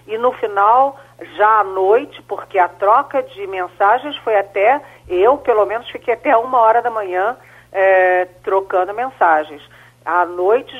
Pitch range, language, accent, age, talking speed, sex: 180-275 Hz, Portuguese, Brazilian, 40-59, 145 wpm, female